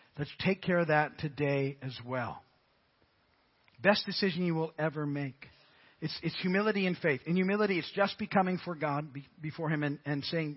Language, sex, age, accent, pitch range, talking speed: English, male, 50-69, American, 140-175 Hz, 175 wpm